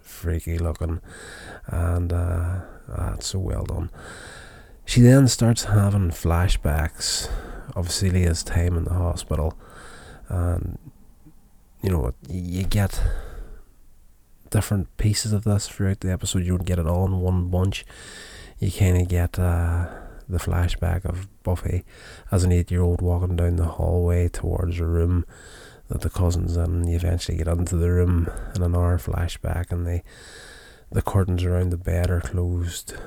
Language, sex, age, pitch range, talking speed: English, male, 20-39, 85-95 Hz, 150 wpm